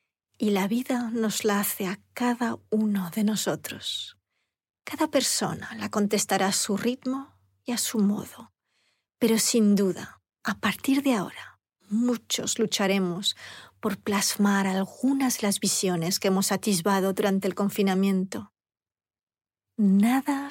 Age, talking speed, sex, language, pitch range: 40-59, 130 wpm, female, Spanish, 195-225 Hz